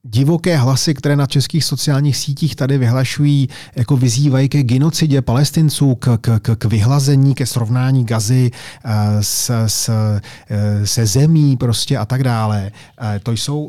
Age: 30-49